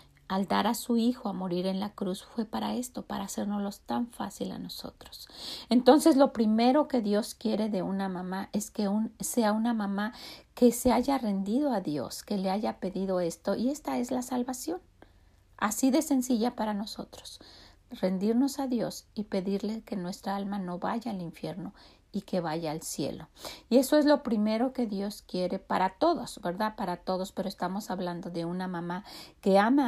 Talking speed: 185 wpm